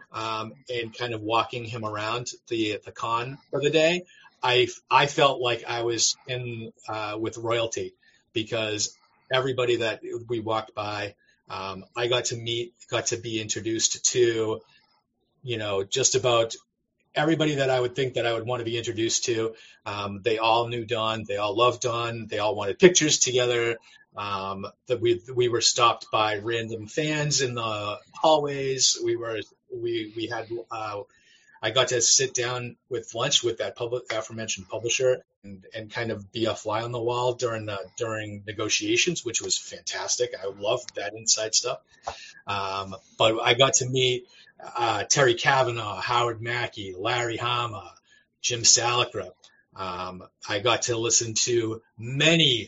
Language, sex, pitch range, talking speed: English, male, 110-130 Hz, 165 wpm